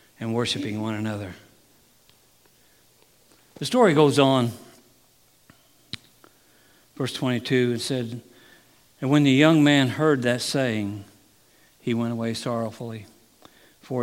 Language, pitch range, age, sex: English, 115-145 Hz, 60-79, male